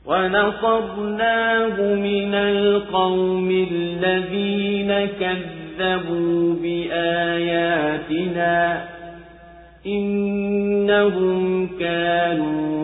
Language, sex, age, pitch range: Swahili, male, 40-59, 170-200 Hz